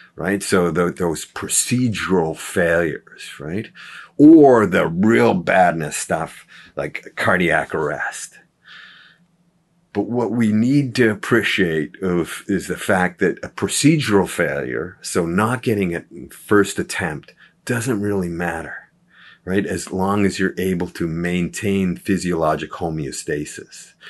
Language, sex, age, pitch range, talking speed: English, male, 50-69, 80-105 Hz, 120 wpm